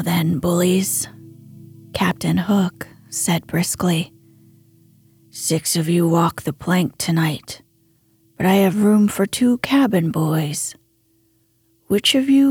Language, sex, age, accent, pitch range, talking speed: English, female, 40-59, American, 150-240 Hz, 115 wpm